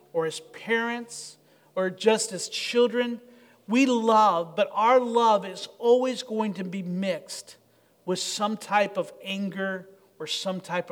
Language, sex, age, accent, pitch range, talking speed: English, male, 40-59, American, 190-240 Hz, 145 wpm